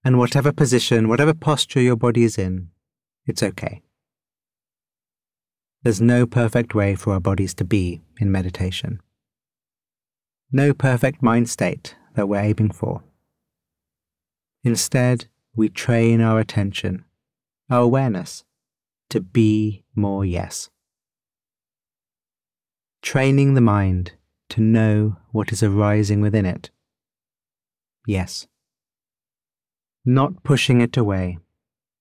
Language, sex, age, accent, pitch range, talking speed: English, male, 30-49, British, 95-120 Hz, 105 wpm